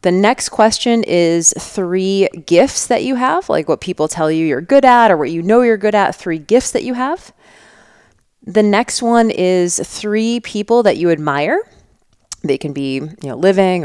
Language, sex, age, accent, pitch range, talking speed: English, female, 30-49, American, 150-210 Hz, 180 wpm